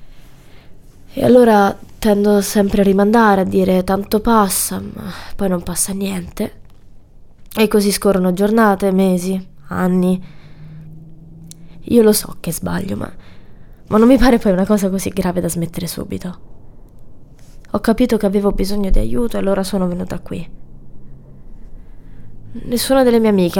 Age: 20-39